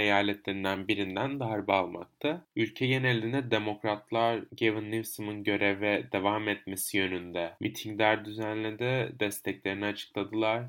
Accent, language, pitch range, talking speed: native, Turkish, 95-120 Hz, 95 wpm